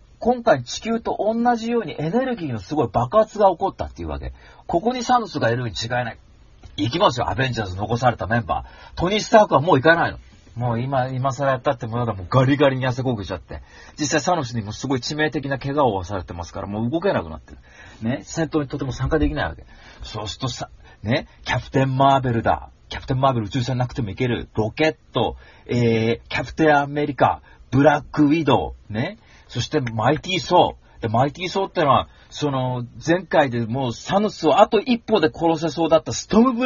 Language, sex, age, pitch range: Japanese, male, 40-59, 110-155 Hz